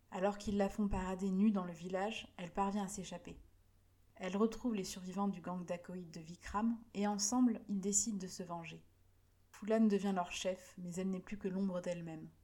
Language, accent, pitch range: French, French, 170-210 Hz